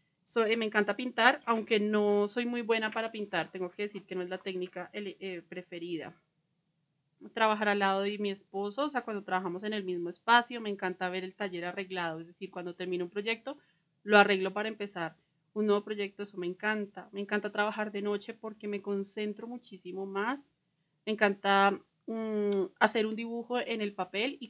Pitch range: 185-215 Hz